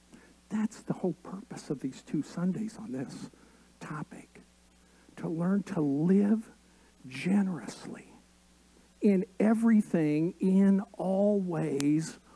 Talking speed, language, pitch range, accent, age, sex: 100 wpm, English, 150-210 Hz, American, 50-69, male